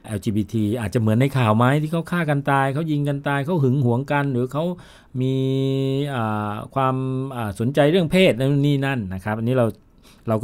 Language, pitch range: Thai, 105-130 Hz